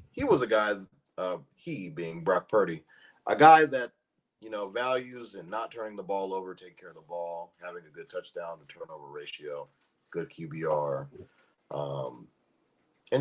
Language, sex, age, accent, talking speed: English, male, 30-49, American, 170 wpm